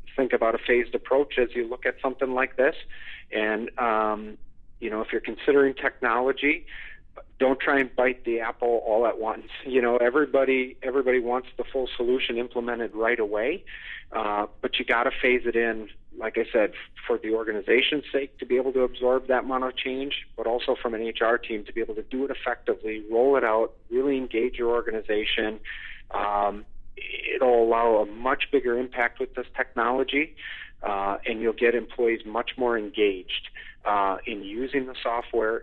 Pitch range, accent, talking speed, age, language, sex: 115-135 Hz, American, 180 wpm, 40-59, English, male